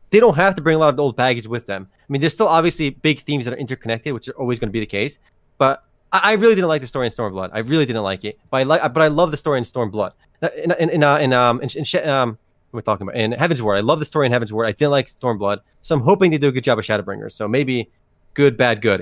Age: 20-39